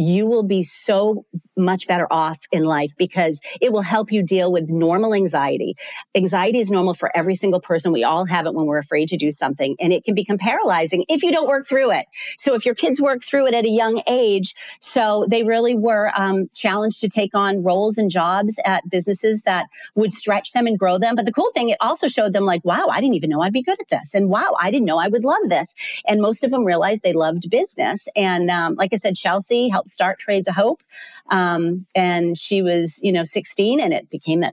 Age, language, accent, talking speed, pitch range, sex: 40-59, English, American, 235 wpm, 180-235 Hz, female